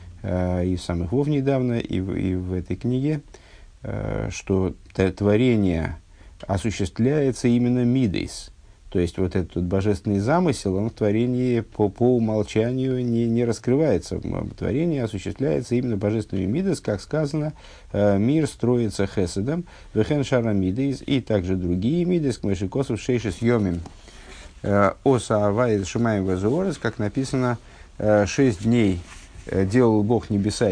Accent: native